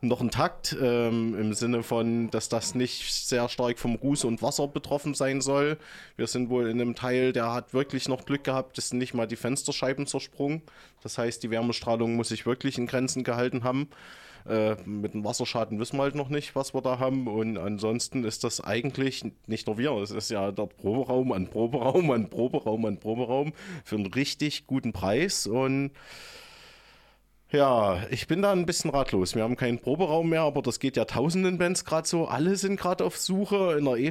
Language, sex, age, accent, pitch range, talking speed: German, male, 20-39, German, 115-145 Hz, 200 wpm